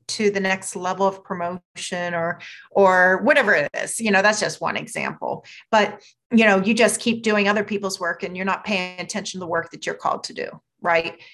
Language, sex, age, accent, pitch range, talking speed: English, female, 30-49, American, 170-210 Hz, 215 wpm